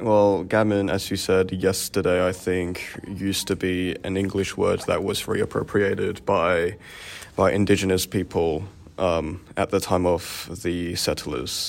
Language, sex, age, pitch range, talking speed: English, male, 20-39, 90-100 Hz, 145 wpm